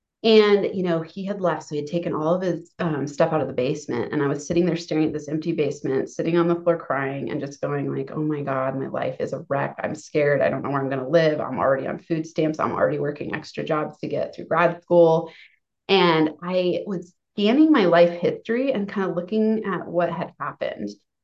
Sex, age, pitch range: female, 30-49, 155-210 Hz